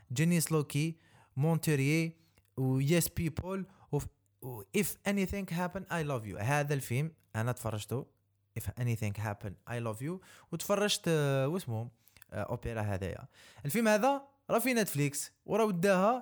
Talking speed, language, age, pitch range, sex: 120 wpm, Arabic, 20-39, 120-155 Hz, male